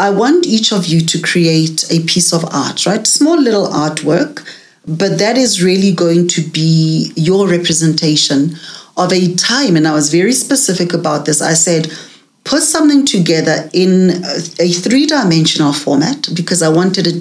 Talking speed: 165 wpm